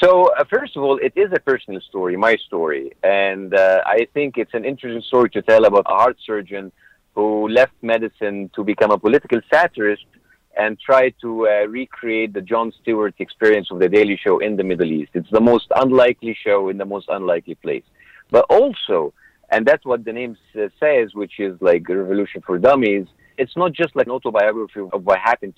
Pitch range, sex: 105-145 Hz, male